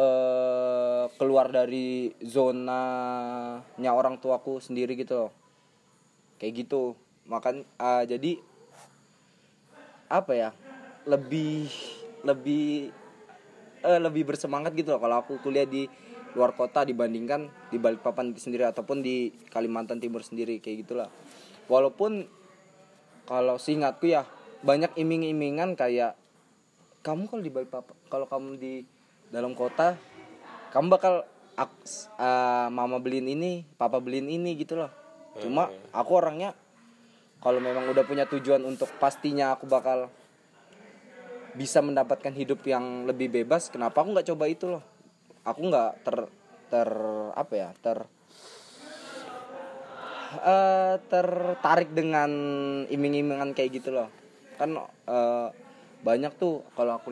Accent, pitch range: native, 125-170 Hz